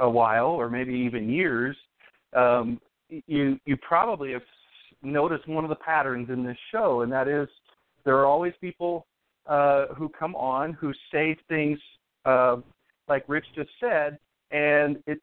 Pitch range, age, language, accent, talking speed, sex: 135-175 Hz, 50-69, English, American, 160 wpm, male